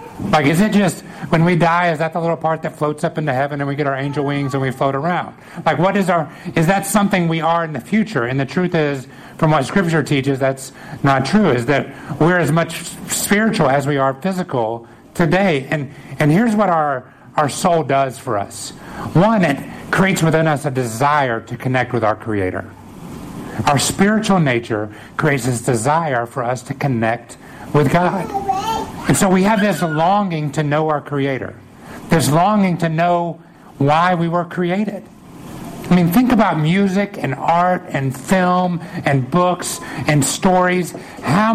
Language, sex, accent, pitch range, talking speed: English, male, American, 135-180 Hz, 185 wpm